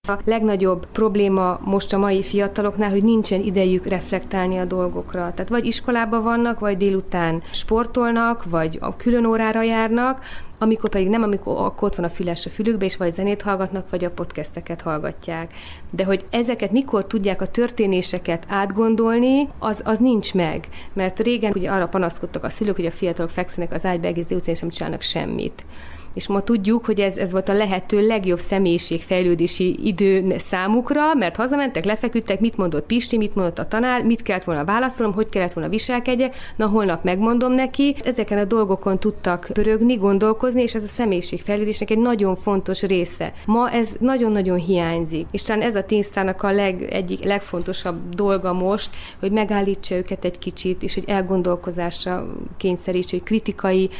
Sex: female